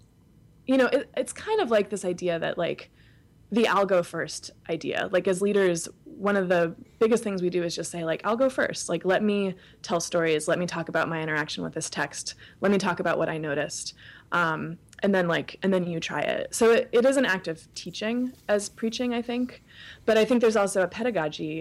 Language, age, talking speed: English, 20-39, 225 wpm